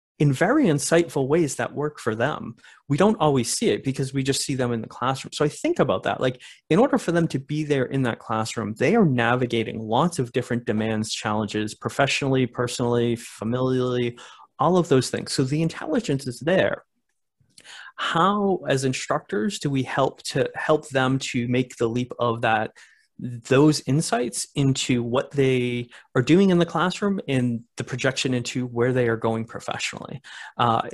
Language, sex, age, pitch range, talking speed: English, male, 30-49, 120-150 Hz, 180 wpm